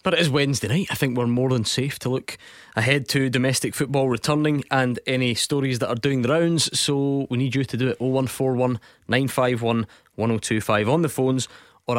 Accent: British